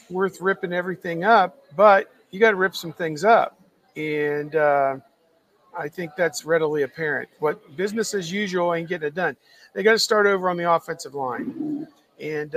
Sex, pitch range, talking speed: male, 150-185 Hz, 175 wpm